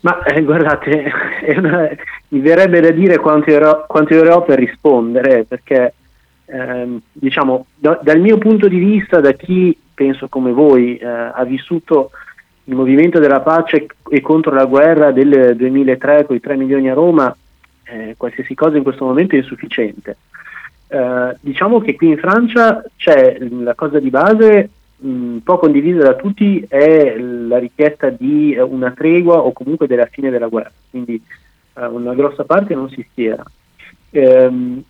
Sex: male